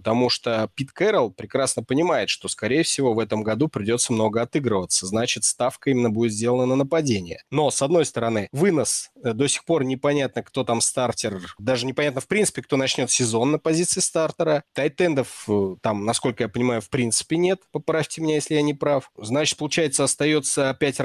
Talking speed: 175 wpm